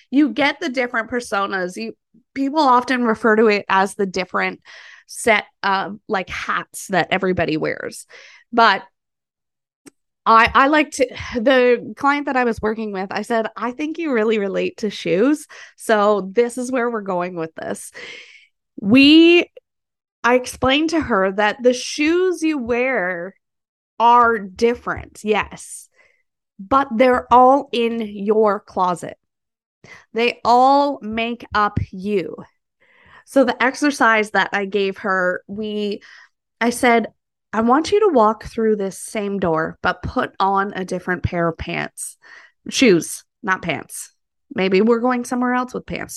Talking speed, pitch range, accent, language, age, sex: 145 wpm, 200-260 Hz, American, English, 20-39, female